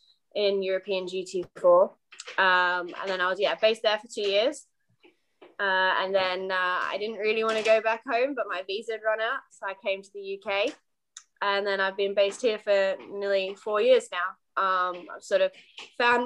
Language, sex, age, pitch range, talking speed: English, female, 20-39, 190-220 Hz, 205 wpm